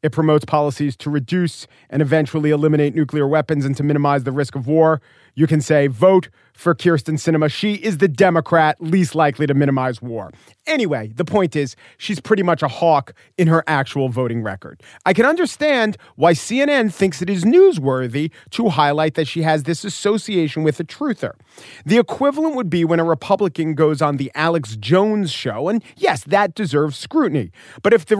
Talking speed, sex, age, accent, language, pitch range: 185 wpm, male, 40-59, American, English, 150-215 Hz